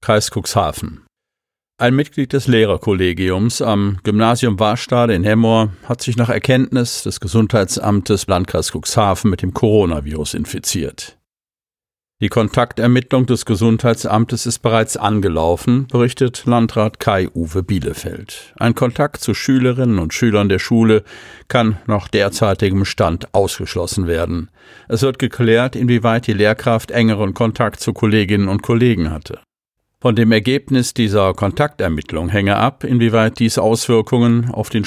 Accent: German